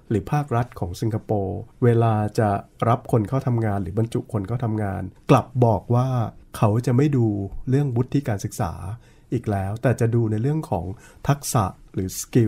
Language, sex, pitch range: Thai, male, 105-135 Hz